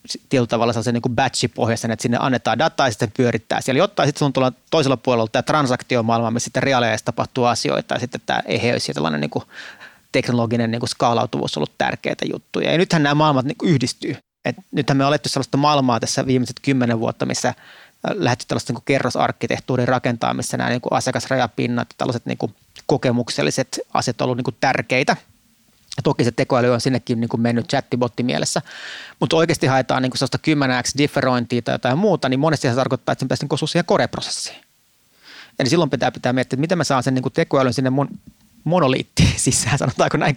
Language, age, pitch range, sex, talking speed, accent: Finnish, 30-49, 125-150 Hz, male, 180 wpm, native